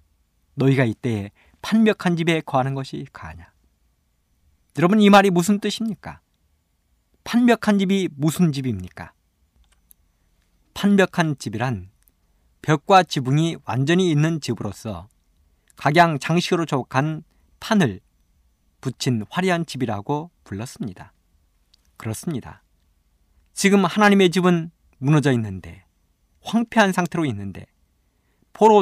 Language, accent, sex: Korean, native, male